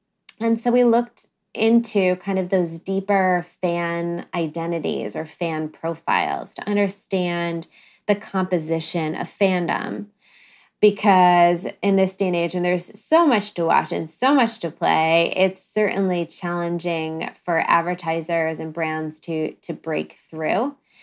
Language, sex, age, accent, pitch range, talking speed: English, female, 20-39, American, 160-195 Hz, 135 wpm